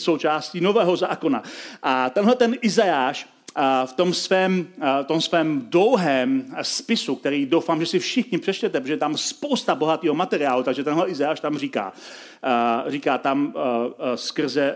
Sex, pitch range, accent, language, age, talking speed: male, 155-220 Hz, native, Czech, 40-59, 140 wpm